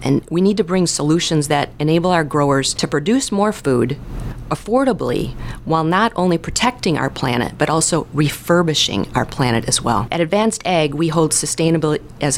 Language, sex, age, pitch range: English, female, 40-59, 140-180 Hz